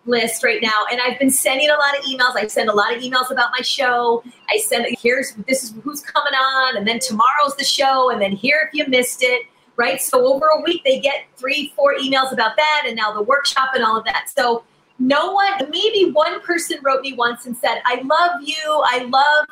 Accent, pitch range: American, 225-285 Hz